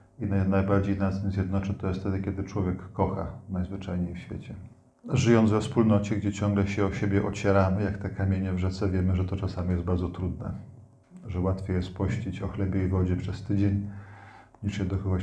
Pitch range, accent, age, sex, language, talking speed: 95-115 Hz, native, 40-59, male, Polish, 185 wpm